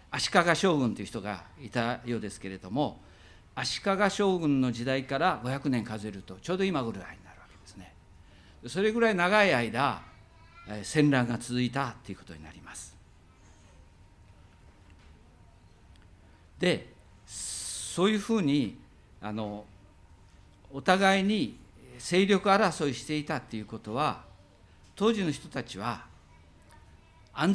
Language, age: Japanese, 50-69